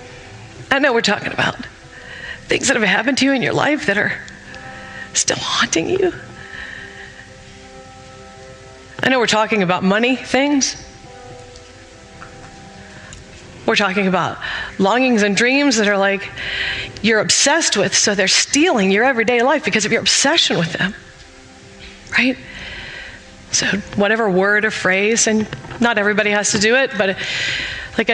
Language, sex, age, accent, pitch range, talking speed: English, female, 40-59, American, 195-220 Hz, 140 wpm